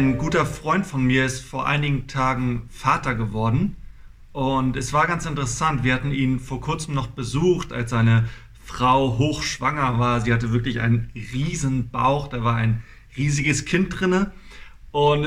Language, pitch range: German, 125-155 Hz